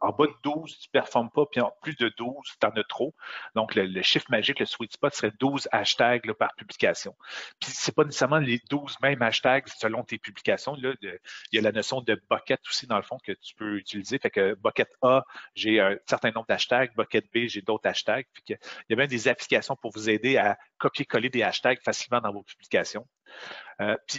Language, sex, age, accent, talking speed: French, male, 40-59, Canadian, 225 wpm